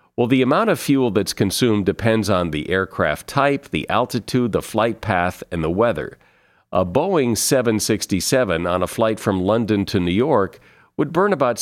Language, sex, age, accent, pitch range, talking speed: English, male, 50-69, American, 95-125 Hz, 175 wpm